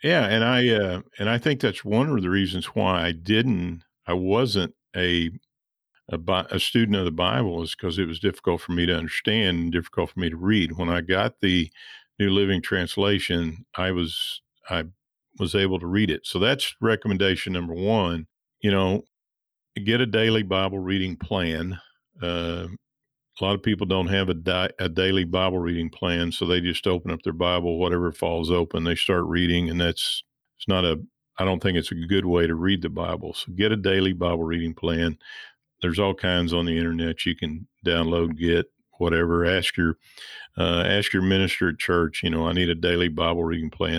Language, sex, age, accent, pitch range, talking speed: English, male, 50-69, American, 85-100 Hz, 200 wpm